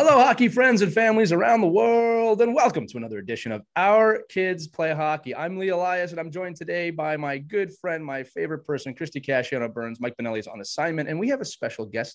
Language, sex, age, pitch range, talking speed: English, male, 30-49, 135-190 Hz, 225 wpm